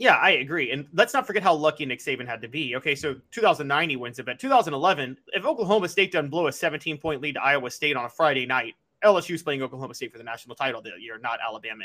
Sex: male